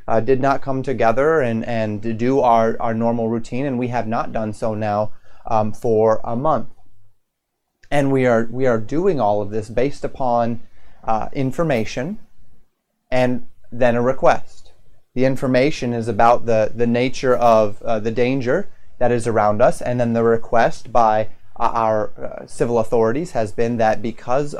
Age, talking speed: 30-49, 165 wpm